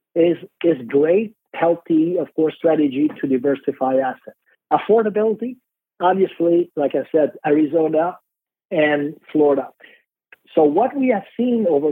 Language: English